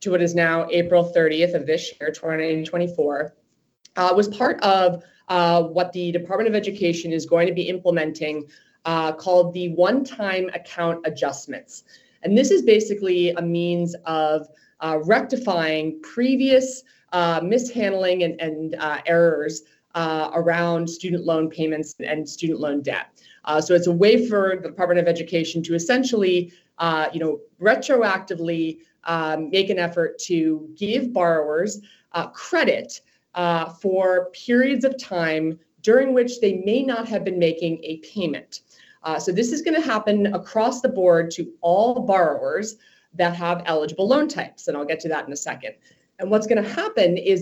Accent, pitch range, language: American, 165-220 Hz, English